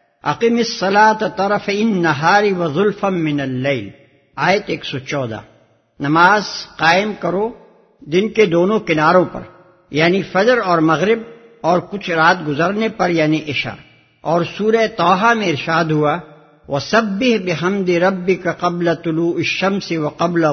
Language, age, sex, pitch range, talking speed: English, 60-79, male, 155-200 Hz, 115 wpm